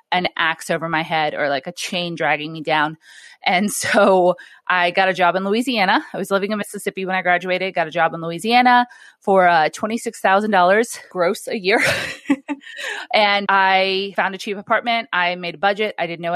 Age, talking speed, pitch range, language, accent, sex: 30-49, 190 wpm, 165-205 Hz, English, American, female